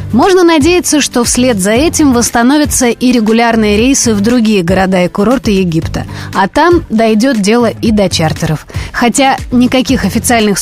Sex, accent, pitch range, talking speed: female, native, 205-270 Hz, 145 wpm